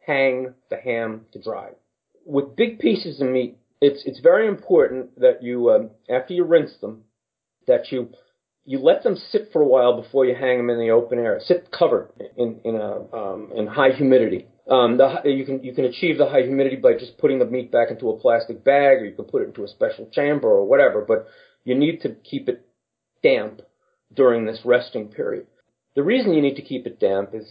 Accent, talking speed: American, 215 wpm